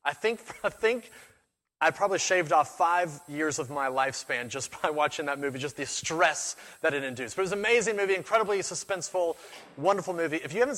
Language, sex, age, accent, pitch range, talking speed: English, male, 30-49, American, 150-195 Hz, 205 wpm